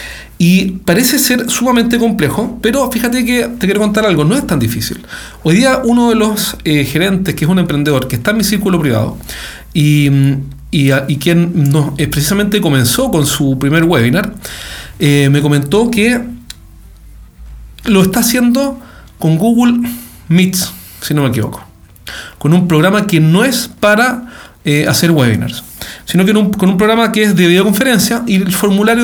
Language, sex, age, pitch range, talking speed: Spanish, male, 40-59, 145-215 Hz, 165 wpm